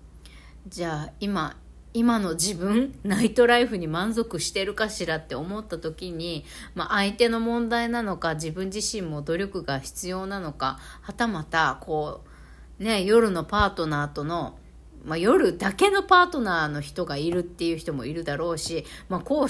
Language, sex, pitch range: Japanese, female, 155-220 Hz